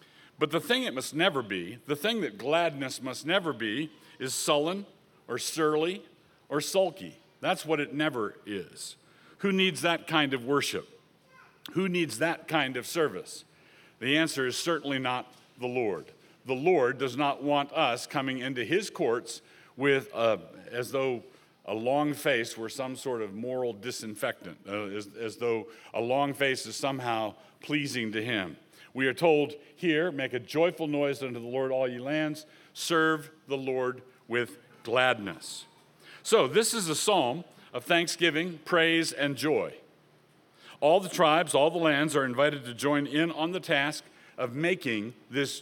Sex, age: male, 50-69